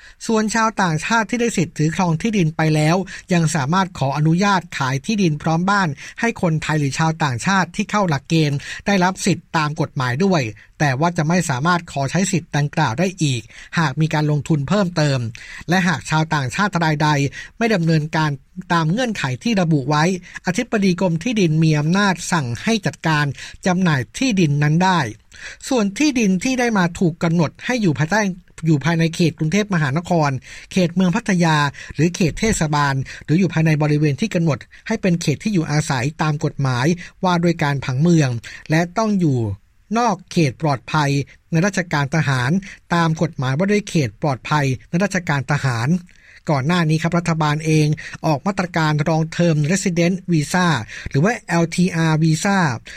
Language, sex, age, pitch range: Thai, male, 60-79, 150-185 Hz